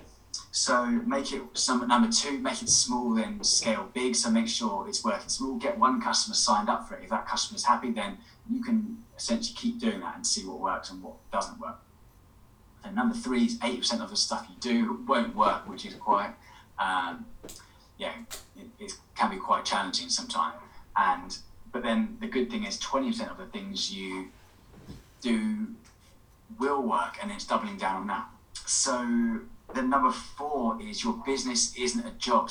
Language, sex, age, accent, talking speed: English, male, 20-39, British, 190 wpm